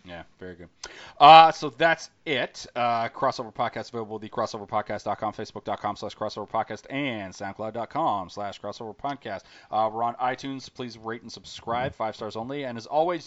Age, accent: 30-49, American